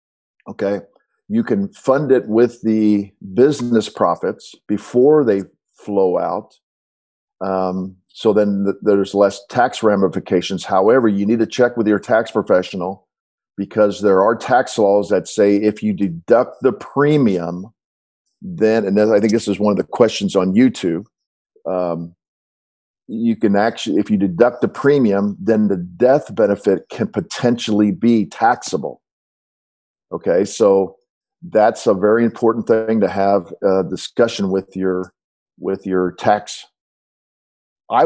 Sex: male